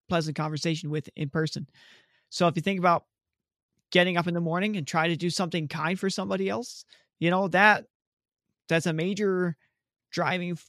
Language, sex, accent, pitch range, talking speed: English, male, American, 160-200 Hz, 175 wpm